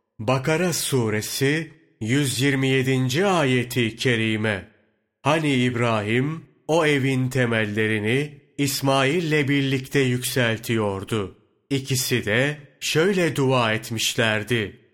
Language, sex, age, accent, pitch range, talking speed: Turkish, male, 40-59, native, 110-140 Hz, 70 wpm